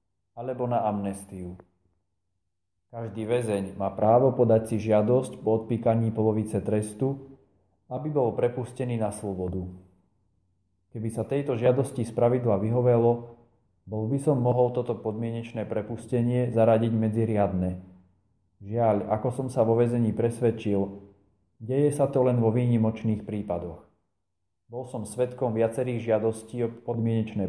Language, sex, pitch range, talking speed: Slovak, male, 95-120 Hz, 120 wpm